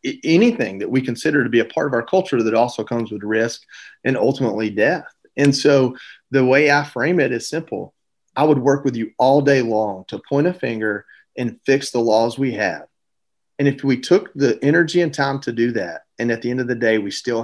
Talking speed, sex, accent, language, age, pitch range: 225 wpm, male, American, English, 30-49, 115-145 Hz